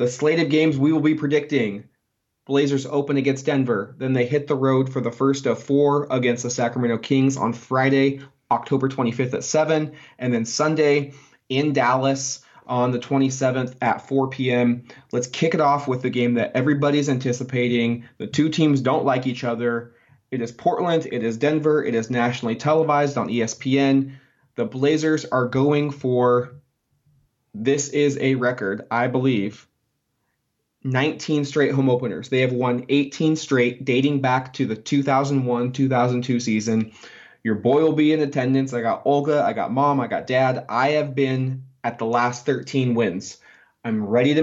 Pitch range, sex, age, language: 125-145 Hz, male, 20-39, English